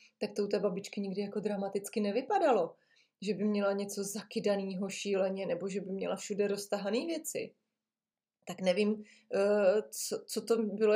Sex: female